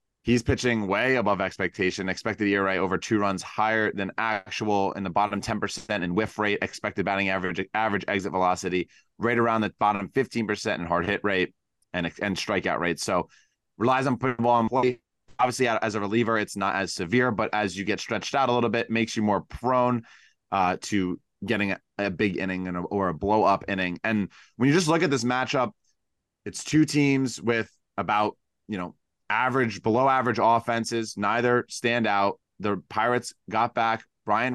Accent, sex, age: American, male, 20-39